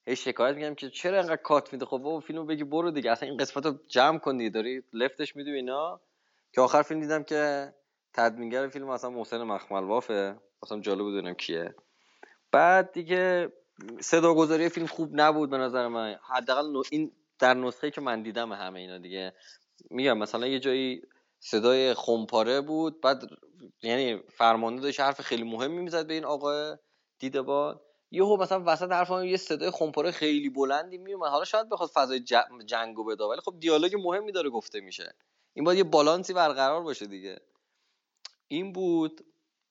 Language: Persian